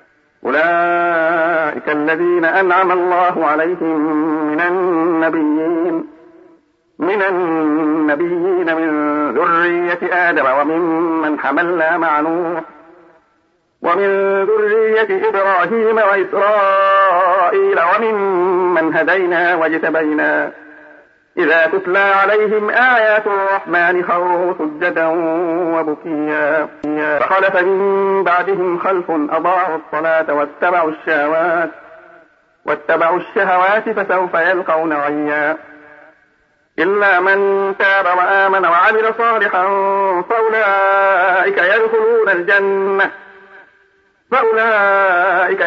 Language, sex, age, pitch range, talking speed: Arabic, male, 50-69, 160-195 Hz, 70 wpm